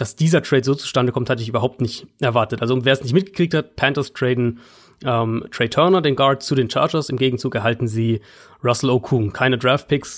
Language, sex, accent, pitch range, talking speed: German, male, German, 125-150 Hz, 205 wpm